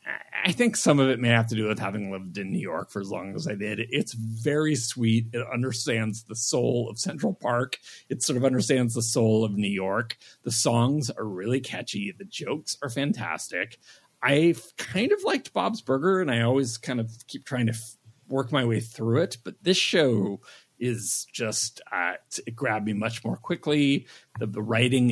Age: 40-59